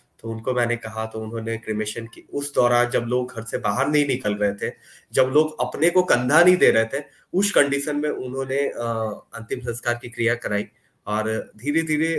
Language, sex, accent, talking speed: English, male, Indian, 190 wpm